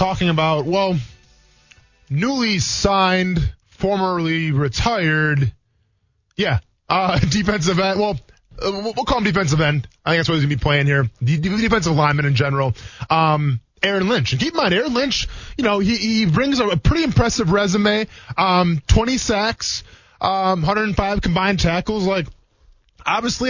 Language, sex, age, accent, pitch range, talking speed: English, male, 20-39, American, 135-185 Hz, 150 wpm